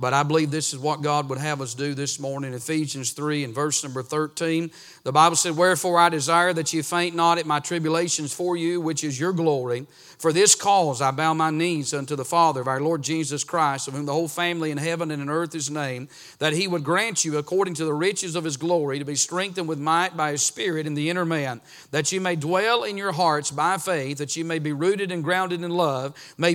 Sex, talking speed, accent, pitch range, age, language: male, 245 wpm, American, 150-185 Hz, 40-59, English